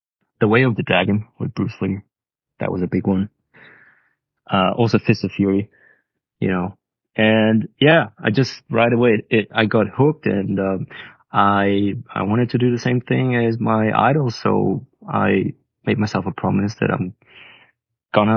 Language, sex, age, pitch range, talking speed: English, male, 20-39, 95-115 Hz, 175 wpm